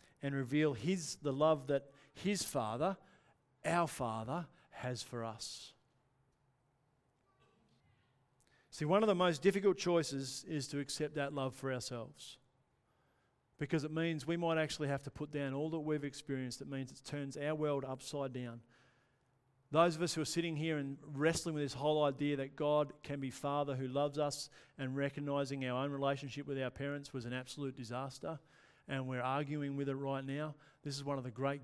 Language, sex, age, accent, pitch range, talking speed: English, male, 50-69, Australian, 130-150 Hz, 180 wpm